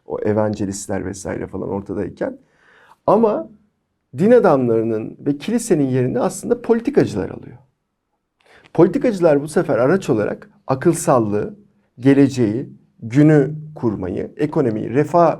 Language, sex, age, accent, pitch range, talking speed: Turkish, male, 50-69, native, 125-200 Hz, 95 wpm